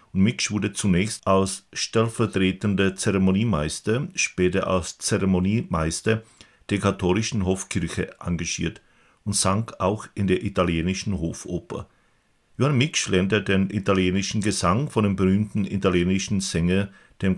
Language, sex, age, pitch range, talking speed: Czech, male, 50-69, 95-105 Hz, 110 wpm